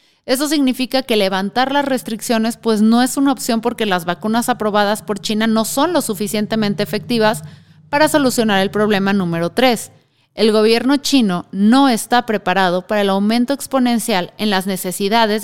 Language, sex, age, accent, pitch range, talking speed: Spanish, female, 30-49, Mexican, 200-245 Hz, 160 wpm